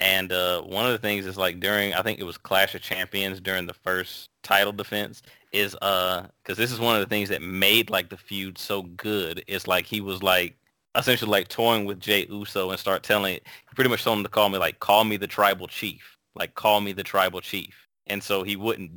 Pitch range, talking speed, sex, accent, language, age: 95-105 Hz, 235 wpm, male, American, English, 30-49